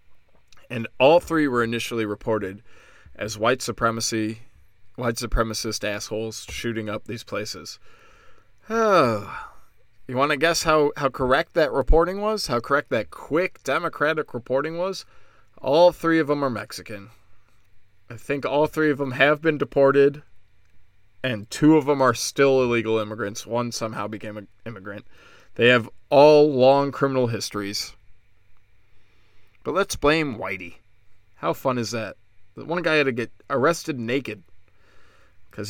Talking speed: 145 wpm